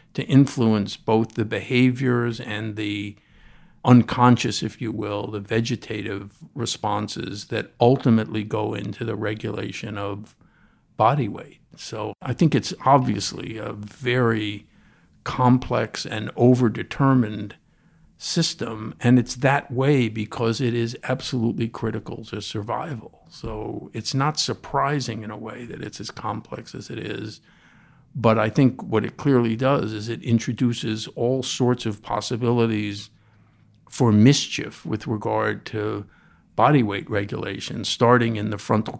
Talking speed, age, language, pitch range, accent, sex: 130 wpm, 50-69, English, 105-125 Hz, American, male